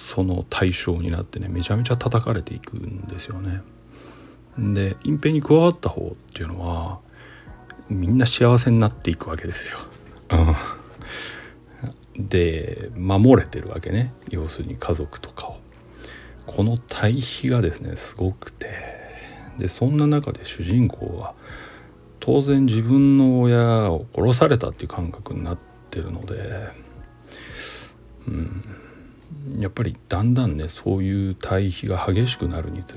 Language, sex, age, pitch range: Japanese, male, 40-59, 90-120 Hz